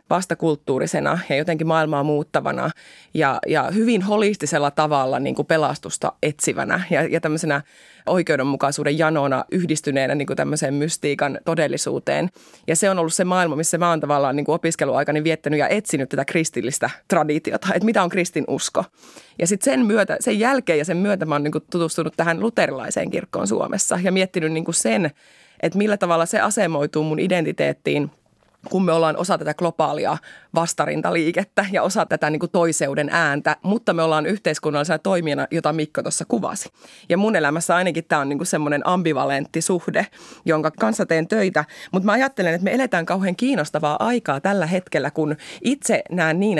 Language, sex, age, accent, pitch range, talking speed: Finnish, female, 20-39, native, 150-190 Hz, 160 wpm